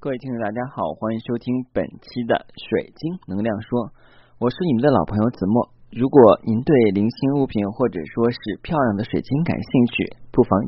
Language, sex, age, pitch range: Chinese, male, 30-49, 100-125 Hz